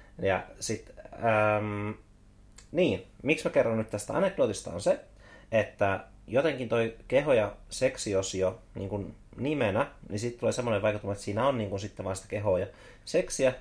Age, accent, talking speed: 30-49, native, 165 wpm